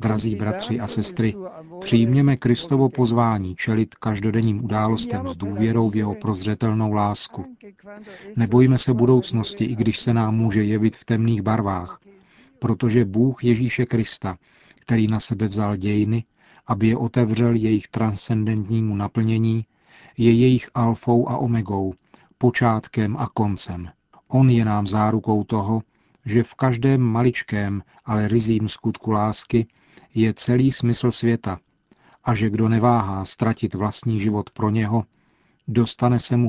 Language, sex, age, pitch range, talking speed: Czech, male, 40-59, 110-120 Hz, 130 wpm